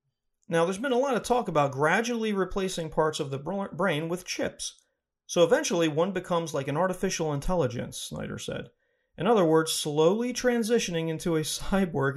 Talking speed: 170 wpm